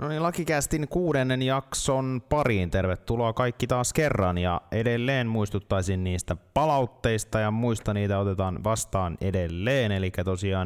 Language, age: Finnish, 20-39